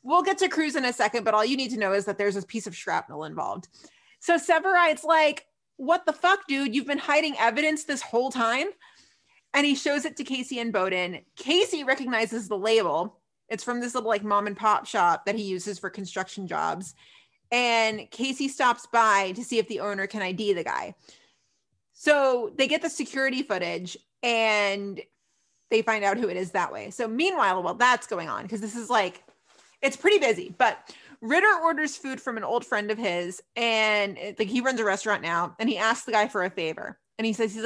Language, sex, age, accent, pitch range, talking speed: English, female, 30-49, American, 205-280 Hz, 215 wpm